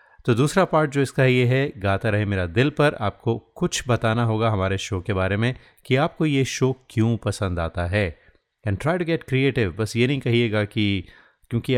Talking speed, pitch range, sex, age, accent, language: 205 wpm, 100-130 Hz, male, 30-49, native, Hindi